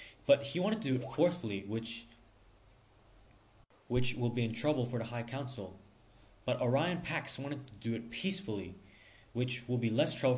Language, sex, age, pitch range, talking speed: English, male, 20-39, 110-135 Hz, 175 wpm